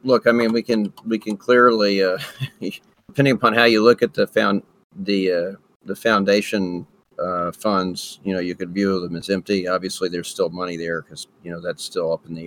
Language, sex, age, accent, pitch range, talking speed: English, male, 40-59, American, 90-115 Hz, 210 wpm